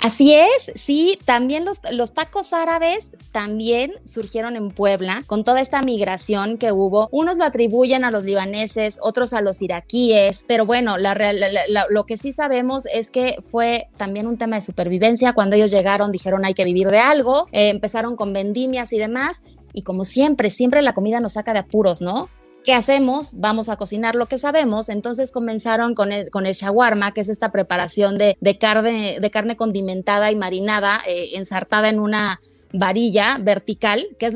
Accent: Mexican